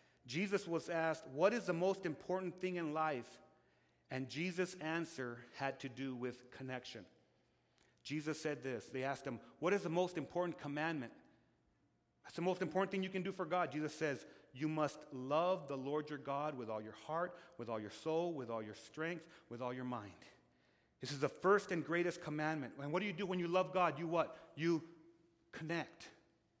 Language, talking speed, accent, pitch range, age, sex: English, 195 wpm, American, 145-185 Hz, 40-59, male